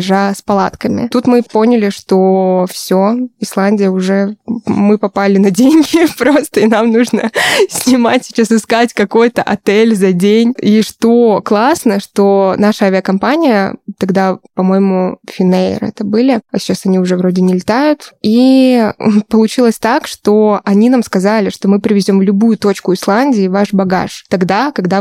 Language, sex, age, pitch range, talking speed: Russian, female, 20-39, 190-225 Hz, 145 wpm